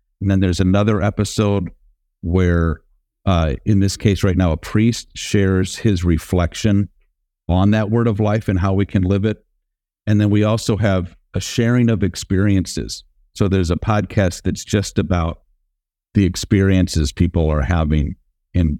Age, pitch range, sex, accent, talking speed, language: 50-69, 80-100 Hz, male, American, 160 wpm, English